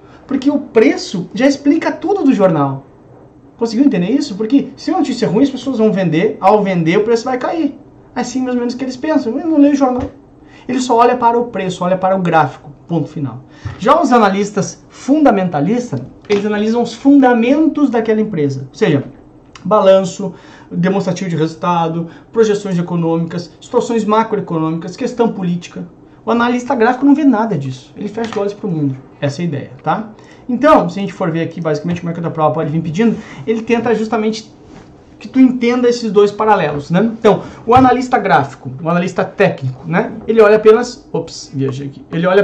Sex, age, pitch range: male, 30-49, 165-240 Hz